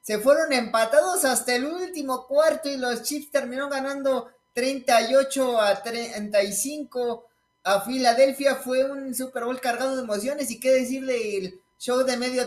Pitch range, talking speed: 220-265 Hz, 150 wpm